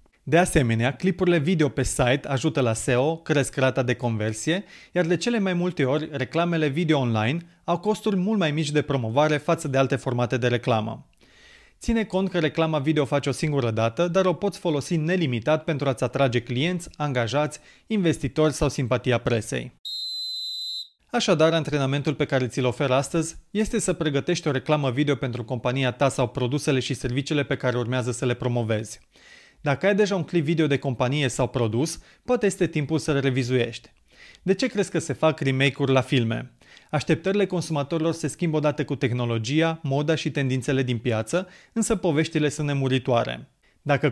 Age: 30-49